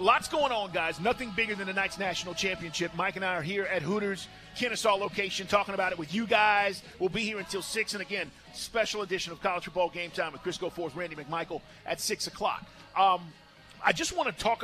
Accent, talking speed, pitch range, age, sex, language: American, 215 wpm, 180-215 Hz, 40-59, male, English